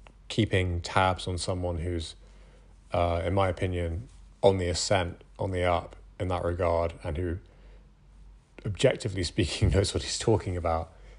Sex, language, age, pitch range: male, English, 30-49, 90-100 Hz